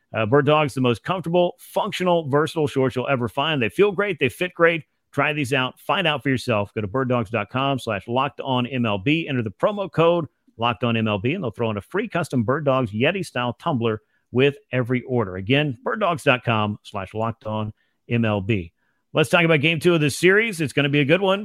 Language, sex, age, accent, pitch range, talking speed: English, male, 40-59, American, 125-160 Hz, 210 wpm